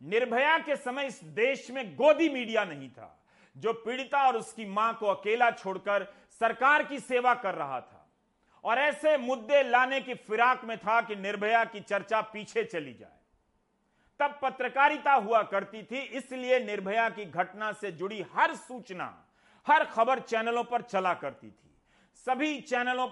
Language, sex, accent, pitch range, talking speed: Hindi, male, native, 200-260 Hz, 160 wpm